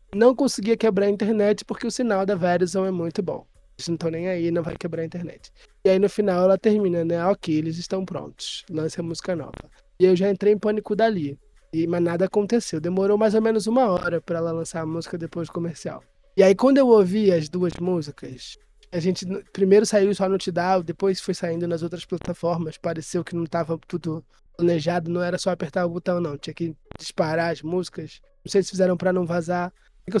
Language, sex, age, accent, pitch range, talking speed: Portuguese, male, 20-39, Brazilian, 175-210 Hz, 220 wpm